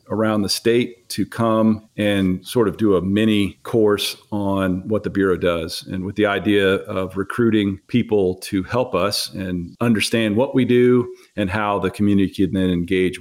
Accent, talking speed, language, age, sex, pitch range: American, 175 wpm, English, 40-59, male, 95-110 Hz